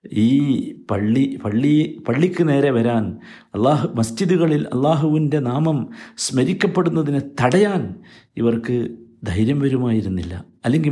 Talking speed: 90 wpm